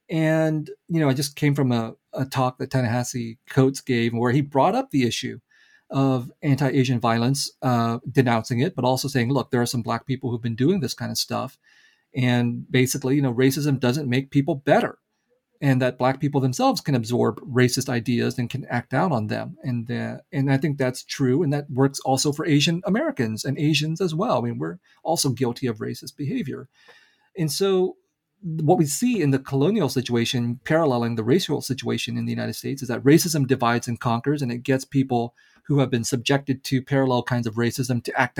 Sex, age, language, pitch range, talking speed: male, 40-59, English, 125-145 Hz, 205 wpm